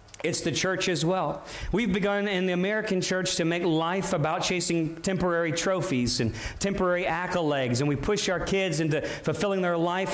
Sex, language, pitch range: male, English, 155-205 Hz